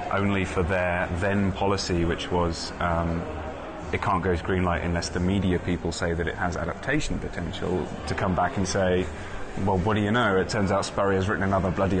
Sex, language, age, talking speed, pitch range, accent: male, English, 20-39, 210 wpm, 90-105 Hz, British